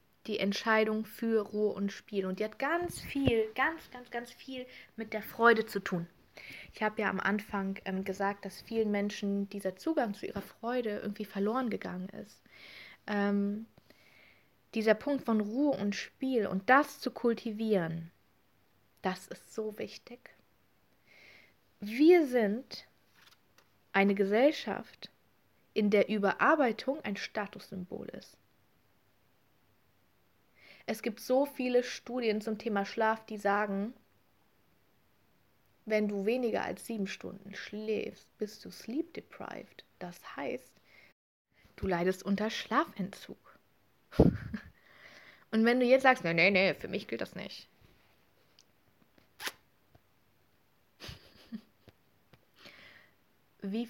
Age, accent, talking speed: 20-39, German, 115 wpm